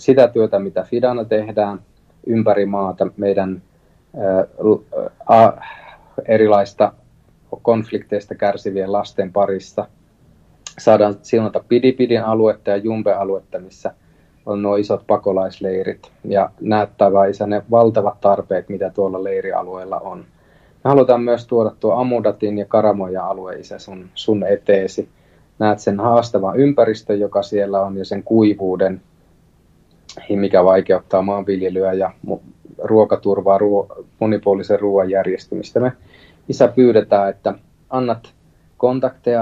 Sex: male